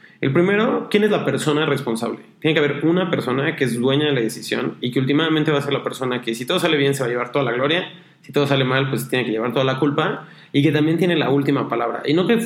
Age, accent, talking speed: 30-49, Mexican, 285 wpm